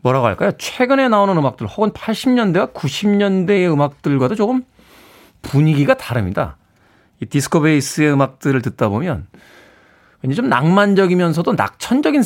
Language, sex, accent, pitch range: Korean, male, native, 120-170 Hz